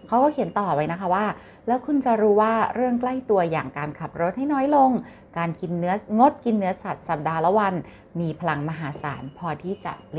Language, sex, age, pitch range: Thai, female, 30-49, 165-225 Hz